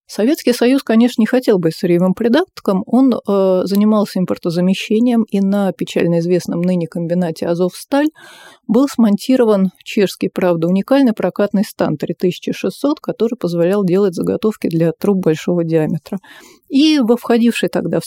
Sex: female